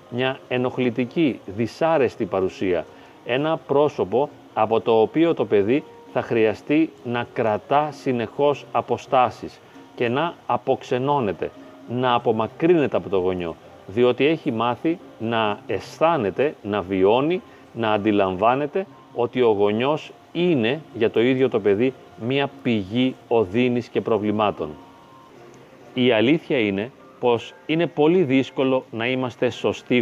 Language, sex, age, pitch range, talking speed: Greek, male, 40-59, 110-135 Hz, 115 wpm